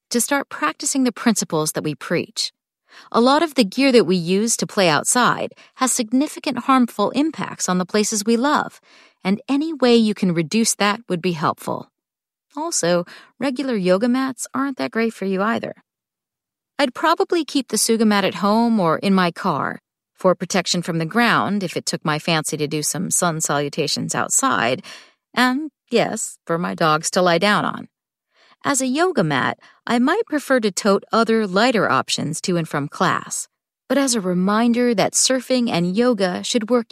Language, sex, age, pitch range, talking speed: English, female, 40-59, 180-250 Hz, 180 wpm